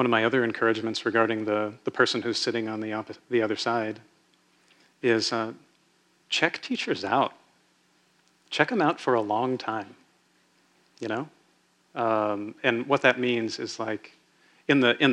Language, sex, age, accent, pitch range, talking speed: English, male, 40-59, American, 105-130 Hz, 155 wpm